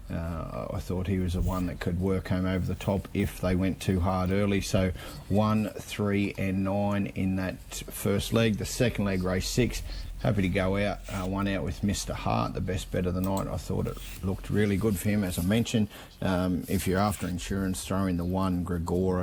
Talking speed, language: 220 wpm, English